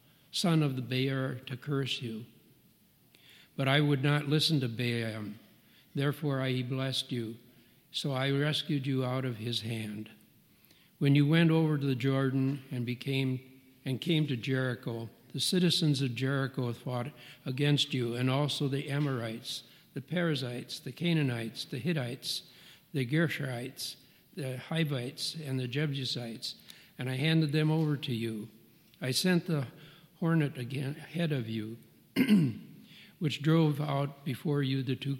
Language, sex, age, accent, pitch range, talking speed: English, male, 60-79, American, 125-150 Hz, 145 wpm